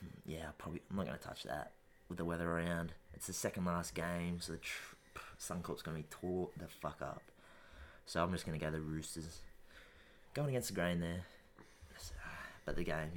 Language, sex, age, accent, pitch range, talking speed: English, male, 20-39, Australian, 80-90 Hz, 190 wpm